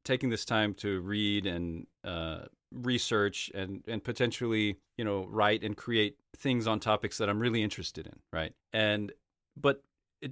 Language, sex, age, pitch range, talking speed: English, male, 40-59, 95-120 Hz, 165 wpm